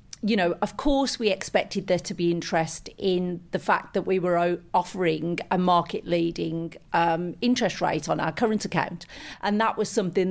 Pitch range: 170-215 Hz